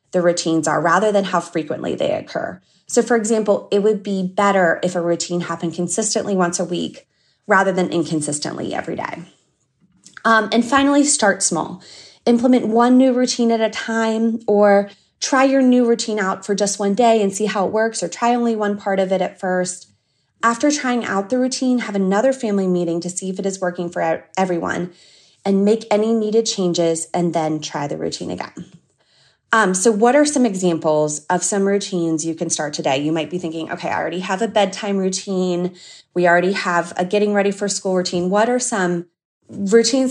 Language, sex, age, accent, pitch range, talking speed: English, female, 20-39, American, 170-220 Hz, 195 wpm